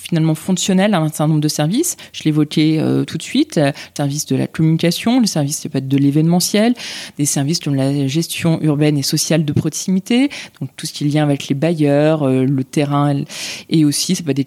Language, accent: French, French